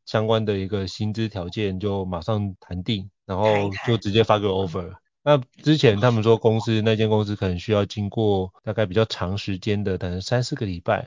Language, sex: Chinese, male